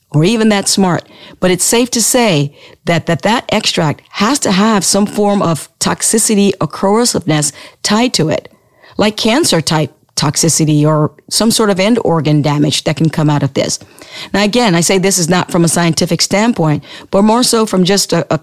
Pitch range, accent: 160-205 Hz, American